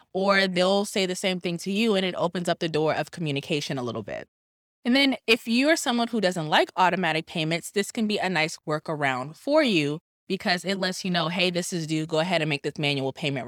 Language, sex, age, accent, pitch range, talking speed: English, female, 20-39, American, 160-210 Hz, 240 wpm